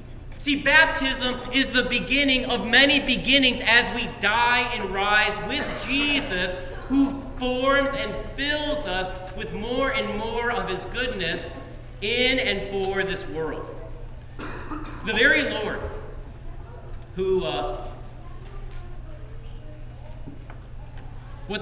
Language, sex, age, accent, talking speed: English, male, 40-59, American, 105 wpm